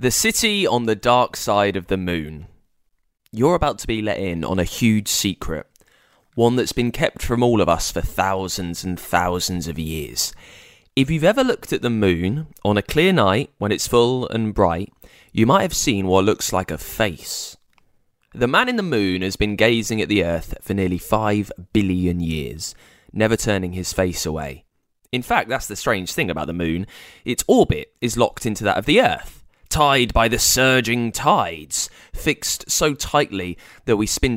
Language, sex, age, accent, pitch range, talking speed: English, male, 20-39, British, 90-115 Hz, 190 wpm